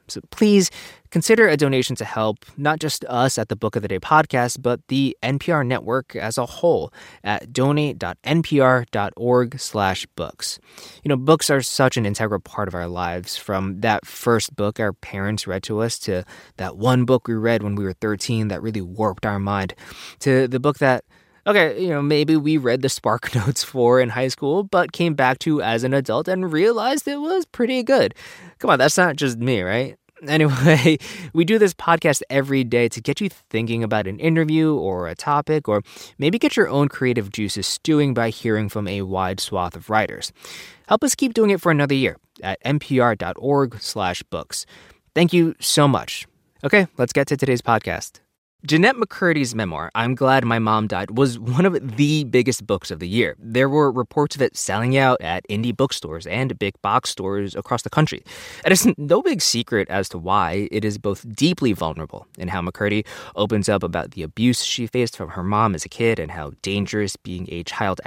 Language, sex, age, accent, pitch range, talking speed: English, male, 20-39, American, 105-145 Hz, 195 wpm